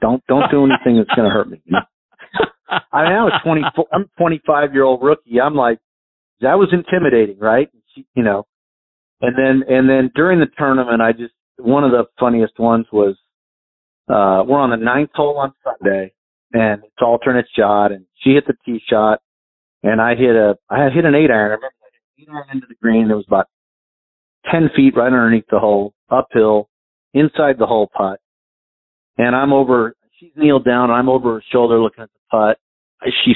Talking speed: 195 wpm